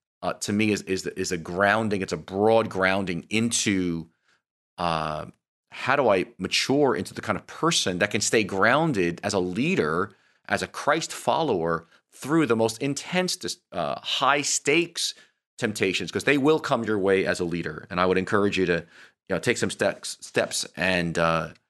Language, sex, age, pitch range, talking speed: English, male, 30-49, 90-125 Hz, 180 wpm